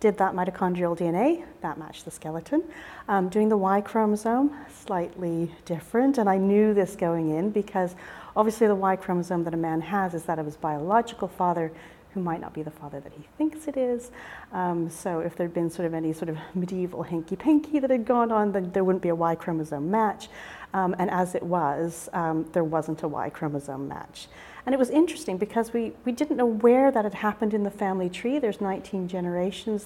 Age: 40-59